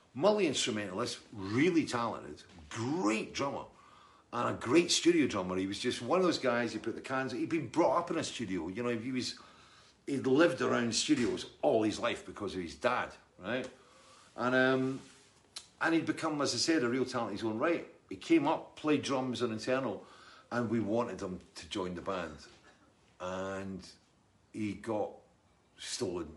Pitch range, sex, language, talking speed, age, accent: 100-130 Hz, male, English, 180 wpm, 50-69, British